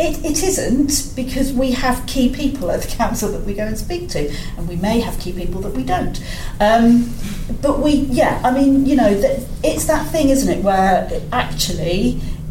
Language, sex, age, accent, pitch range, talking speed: English, female, 40-59, British, 170-260 Hz, 195 wpm